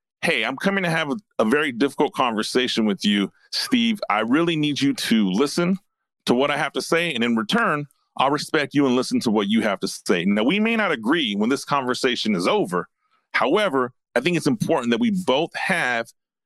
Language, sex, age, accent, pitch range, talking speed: English, male, 40-59, American, 140-215 Hz, 210 wpm